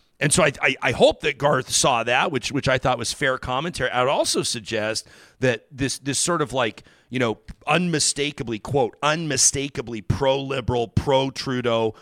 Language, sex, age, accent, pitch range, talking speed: English, male, 40-59, American, 115-155 Hz, 170 wpm